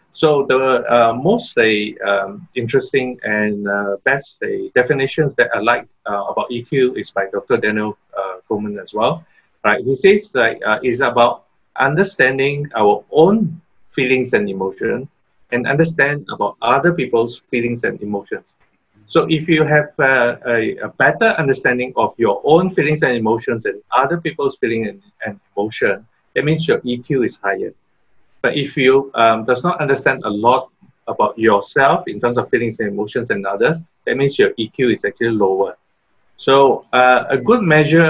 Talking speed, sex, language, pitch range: 165 wpm, male, English, 115-160 Hz